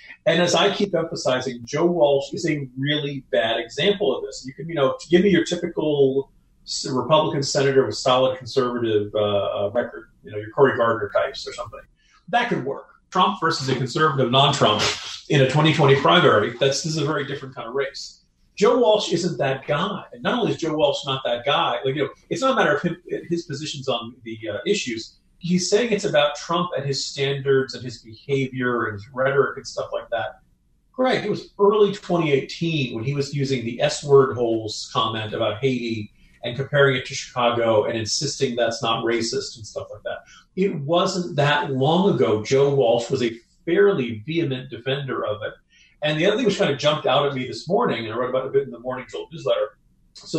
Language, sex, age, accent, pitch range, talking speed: English, male, 40-59, American, 125-165 Hz, 205 wpm